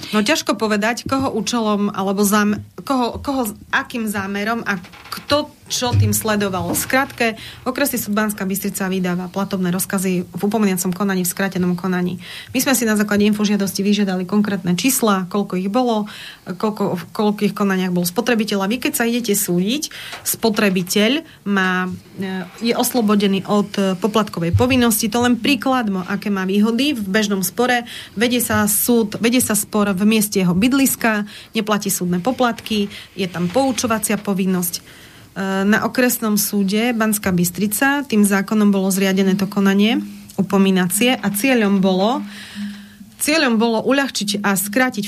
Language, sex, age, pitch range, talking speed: Slovak, female, 30-49, 195-230 Hz, 140 wpm